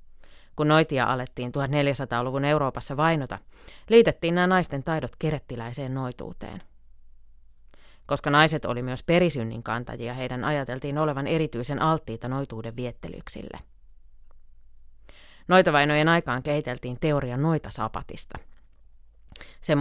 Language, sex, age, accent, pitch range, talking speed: Finnish, female, 30-49, native, 100-145 Hz, 95 wpm